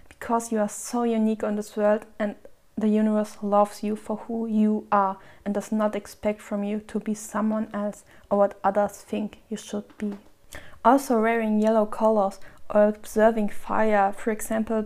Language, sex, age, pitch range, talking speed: German, female, 20-39, 200-215 Hz, 175 wpm